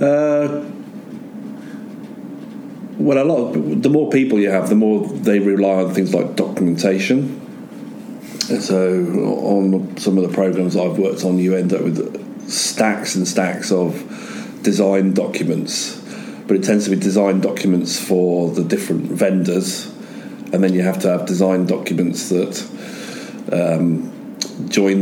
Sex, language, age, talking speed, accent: male, English, 40-59, 145 wpm, British